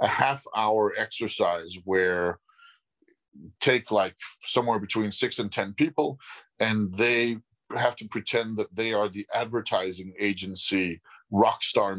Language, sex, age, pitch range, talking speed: English, male, 40-59, 100-120 Hz, 125 wpm